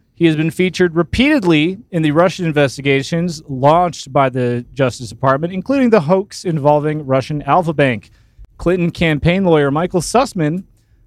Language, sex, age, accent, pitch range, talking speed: English, male, 30-49, American, 135-180 Hz, 140 wpm